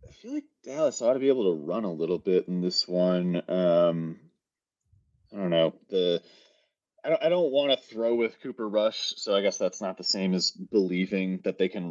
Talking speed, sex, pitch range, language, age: 215 wpm, male, 100-140 Hz, English, 30-49